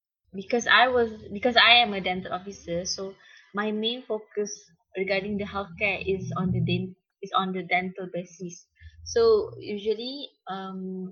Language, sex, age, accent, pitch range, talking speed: English, female, 20-39, Malaysian, 185-220 Hz, 150 wpm